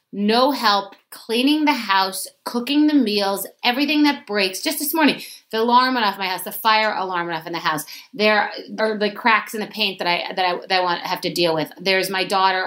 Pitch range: 180-225 Hz